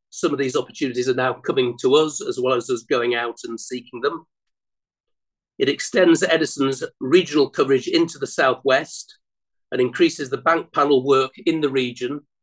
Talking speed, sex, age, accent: 170 wpm, male, 50-69, British